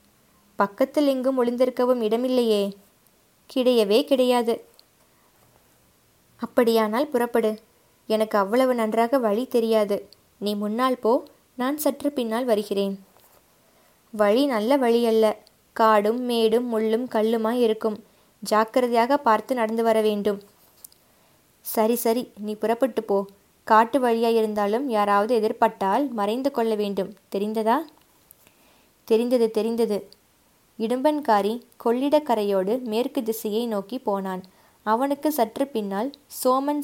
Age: 20-39